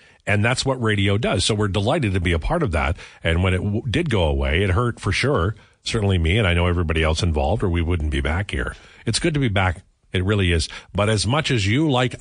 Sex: male